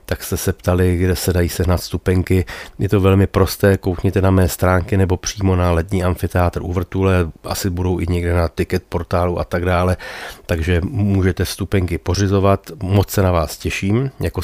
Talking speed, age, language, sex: 185 wpm, 30-49, Czech, male